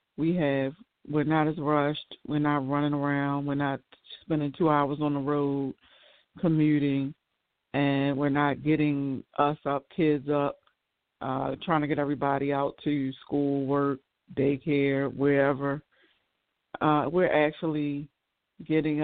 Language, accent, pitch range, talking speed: English, American, 135-150 Hz, 130 wpm